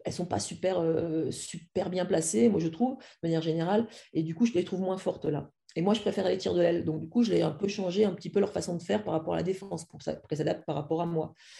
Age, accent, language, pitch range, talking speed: 40-59, French, French, 160-205 Hz, 310 wpm